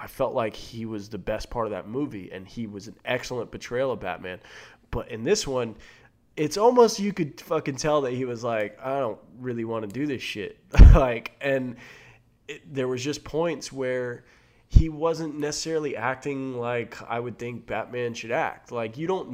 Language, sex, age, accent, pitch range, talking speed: English, male, 20-39, American, 115-150 Hz, 190 wpm